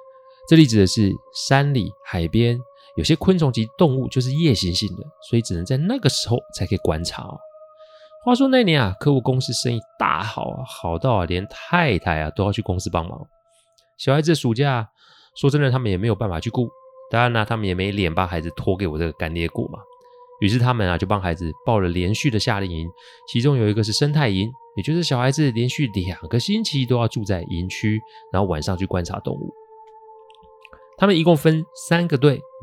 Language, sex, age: Chinese, male, 30-49